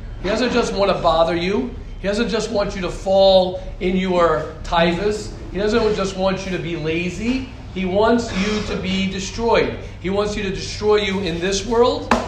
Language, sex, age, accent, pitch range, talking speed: English, male, 40-59, American, 170-215 Hz, 195 wpm